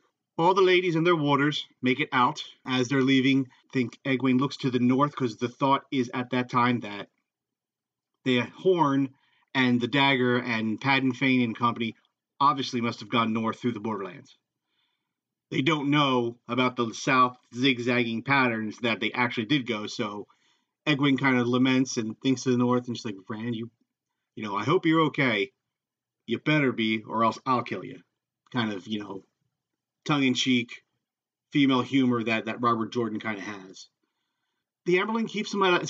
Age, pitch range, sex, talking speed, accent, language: 40-59, 115-135 Hz, male, 180 wpm, American, English